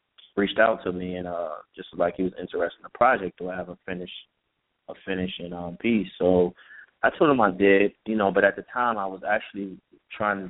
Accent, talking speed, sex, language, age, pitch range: American, 215 wpm, male, English, 20-39, 90-100 Hz